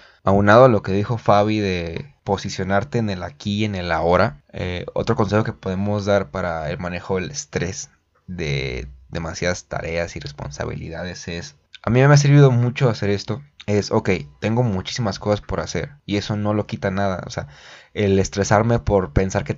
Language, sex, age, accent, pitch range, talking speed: Spanish, male, 20-39, Mexican, 100-120 Hz, 190 wpm